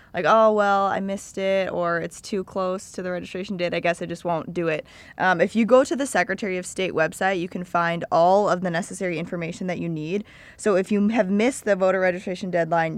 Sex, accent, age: female, American, 20-39